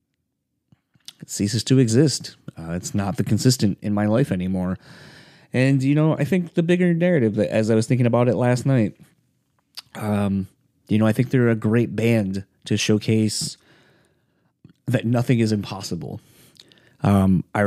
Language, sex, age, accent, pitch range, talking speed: English, male, 30-49, American, 100-120 Hz, 155 wpm